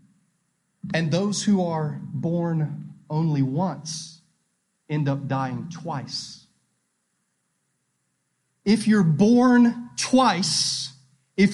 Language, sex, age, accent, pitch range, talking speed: English, male, 30-49, American, 170-230 Hz, 85 wpm